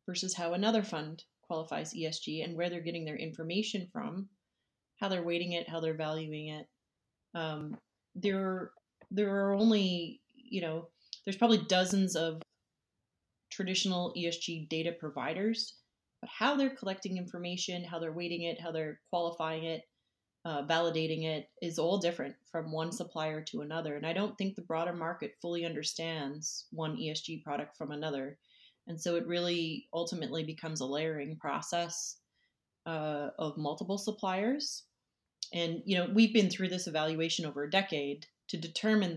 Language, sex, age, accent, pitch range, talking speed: English, female, 30-49, American, 155-190 Hz, 155 wpm